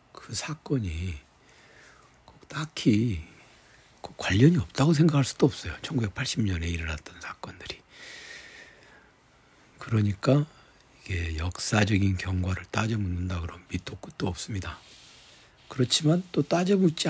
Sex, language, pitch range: male, Korean, 85-125 Hz